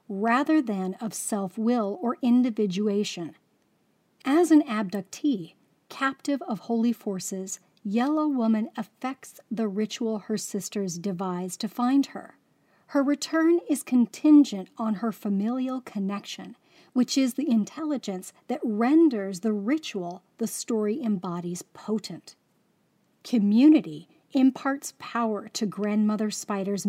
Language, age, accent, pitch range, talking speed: English, 40-59, American, 200-260 Hz, 110 wpm